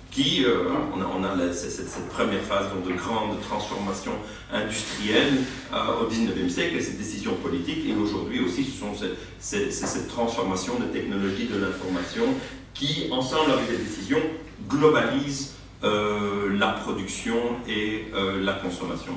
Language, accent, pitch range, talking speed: French, French, 95-155 Hz, 150 wpm